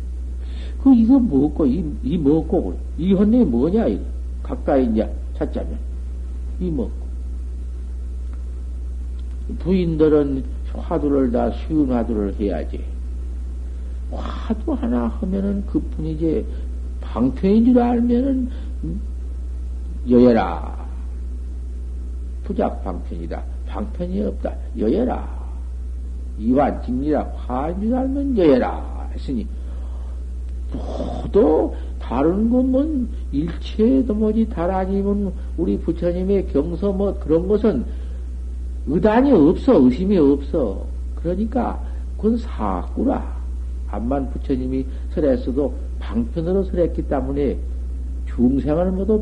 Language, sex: Korean, male